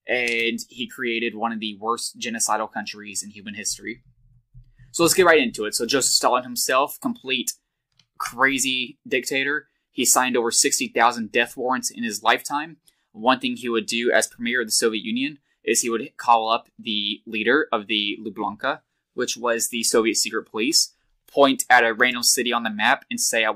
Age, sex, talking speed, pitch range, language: 20-39, male, 185 wpm, 115-135 Hz, English